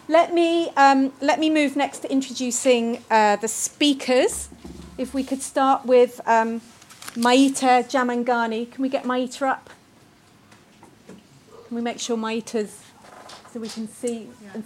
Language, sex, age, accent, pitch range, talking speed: English, female, 40-59, British, 235-270 Hz, 145 wpm